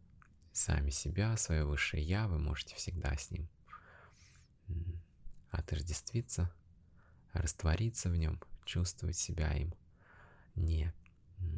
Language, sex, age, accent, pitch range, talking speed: Russian, male, 20-39, native, 80-95 Hz, 95 wpm